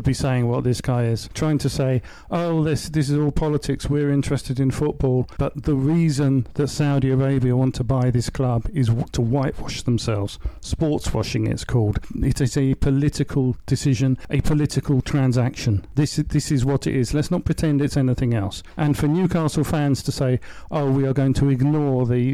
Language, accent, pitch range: English, British, 120-145 Hz